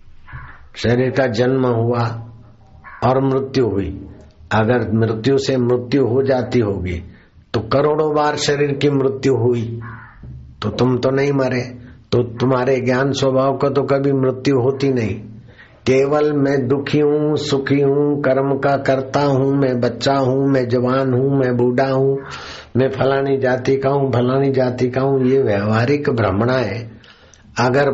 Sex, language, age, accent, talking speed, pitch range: male, Hindi, 60-79, native, 95 wpm, 110-135 Hz